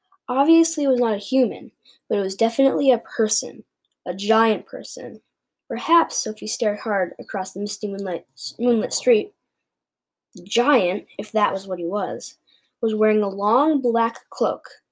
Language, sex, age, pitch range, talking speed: English, female, 10-29, 200-250 Hz, 160 wpm